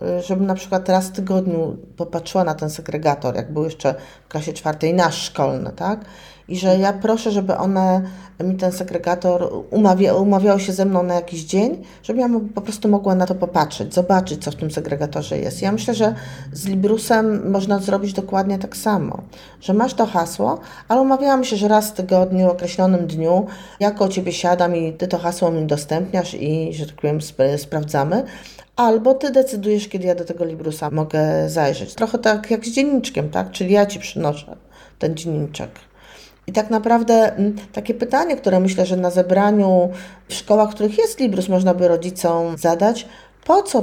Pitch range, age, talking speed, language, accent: 170-210 Hz, 40-59, 180 wpm, Polish, native